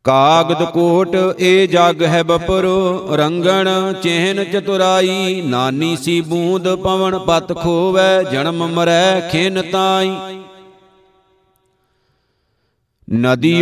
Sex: male